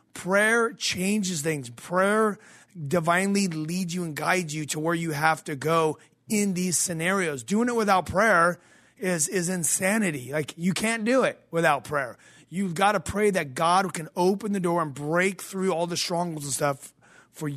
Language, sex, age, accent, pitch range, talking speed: English, male, 30-49, American, 150-185 Hz, 185 wpm